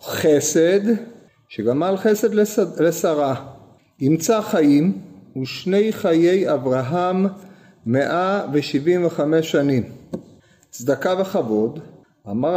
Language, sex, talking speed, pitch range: Hebrew, male, 65 wpm, 140-185 Hz